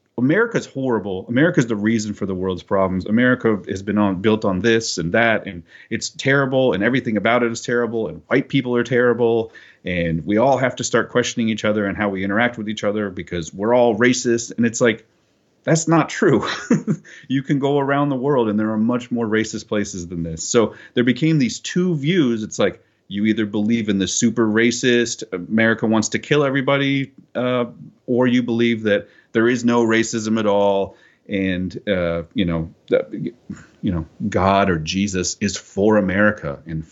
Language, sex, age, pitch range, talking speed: English, male, 30-49, 100-130 Hz, 190 wpm